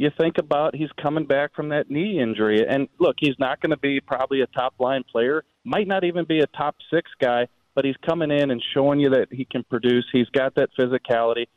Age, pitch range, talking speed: 40-59, 125-145 Hz, 225 wpm